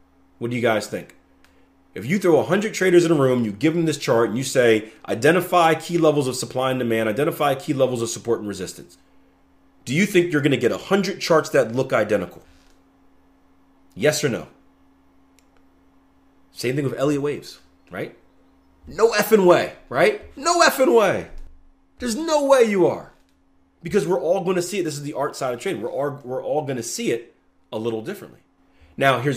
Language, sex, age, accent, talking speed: English, male, 30-49, American, 190 wpm